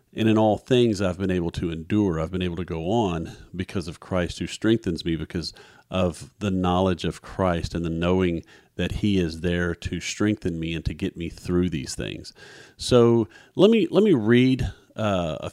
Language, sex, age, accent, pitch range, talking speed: English, male, 40-59, American, 90-110 Hz, 200 wpm